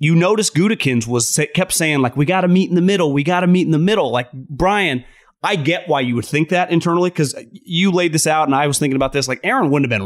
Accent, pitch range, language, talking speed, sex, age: American, 125-170 Hz, English, 280 wpm, male, 30-49